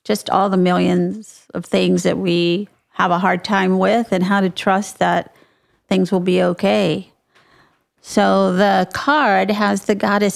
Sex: female